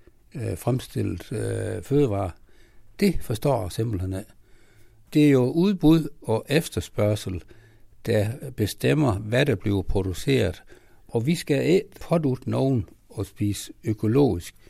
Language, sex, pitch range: Danish, male, 100-130 Hz